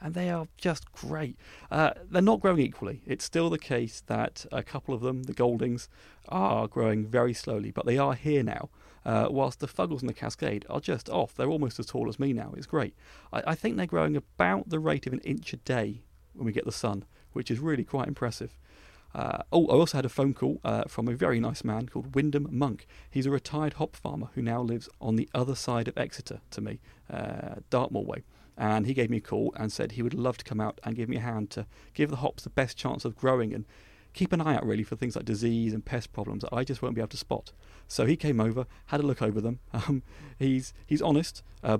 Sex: male